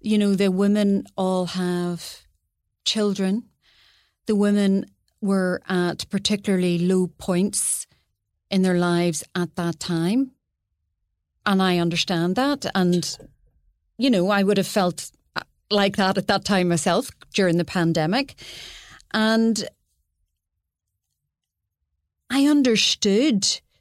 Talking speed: 110 wpm